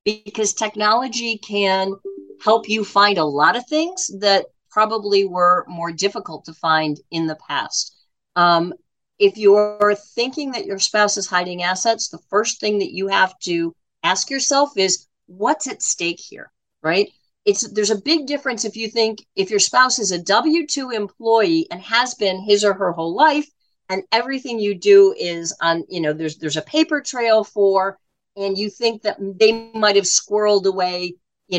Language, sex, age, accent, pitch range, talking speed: English, female, 50-69, American, 185-240 Hz, 175 wpm